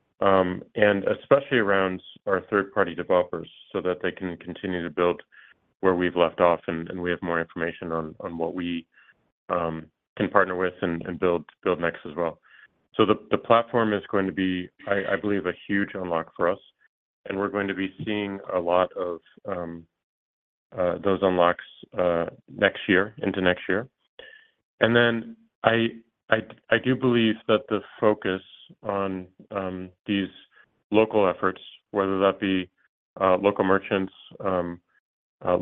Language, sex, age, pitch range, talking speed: English, male, 30-49, 90-105 Hz, 165 wpm